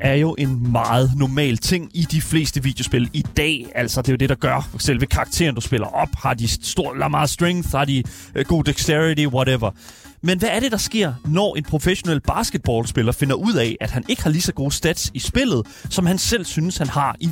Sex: male